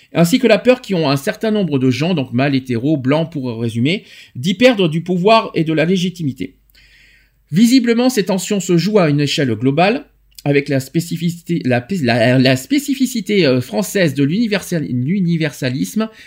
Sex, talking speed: male, 150 wpm